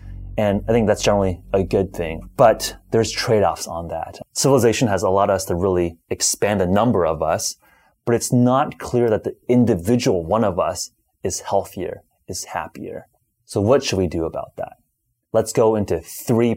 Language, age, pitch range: English, 30-49, 90-115 Hz